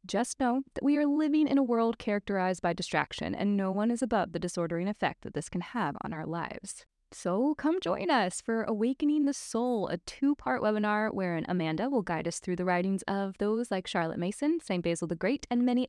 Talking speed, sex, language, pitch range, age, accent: 215 wpm, female, English, 180-245 Hz, 20-39, American